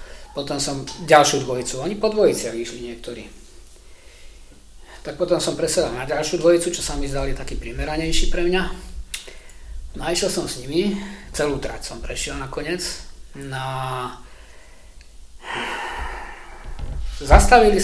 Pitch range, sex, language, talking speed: 110-170 Hz, male, Slovak, 130 wpm